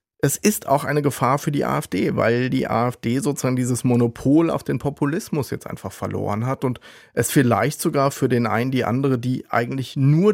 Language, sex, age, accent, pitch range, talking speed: German, male, 30-49, German, 115-140 Hz, 190 wpm